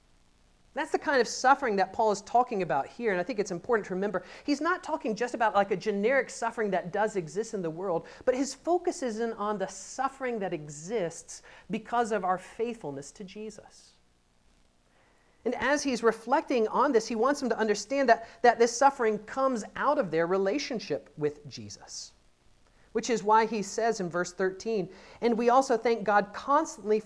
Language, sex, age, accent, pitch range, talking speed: English, male, 40-59, American, 185-240 Hz, 190 wpm